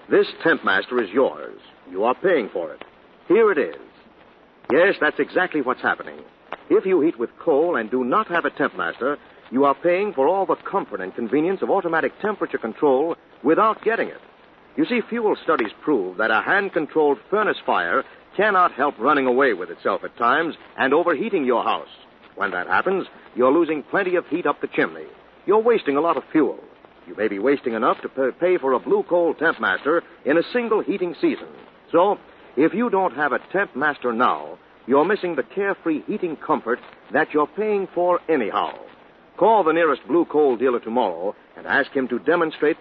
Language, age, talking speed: English, 60-79, 190 wpm